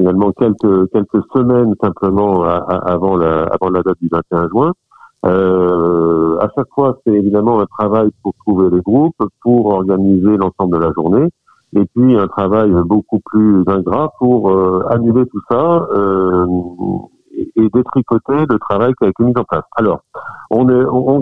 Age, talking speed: 50-69, 175 wpm